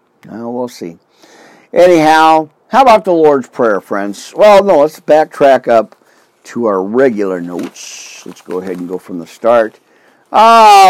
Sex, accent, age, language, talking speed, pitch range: male, American, 50-69, English, 155 wpm, 115-160 Hz